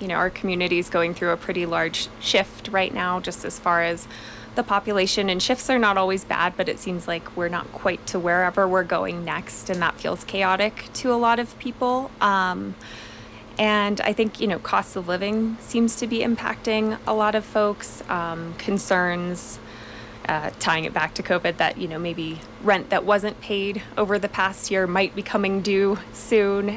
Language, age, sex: English, 20-39, female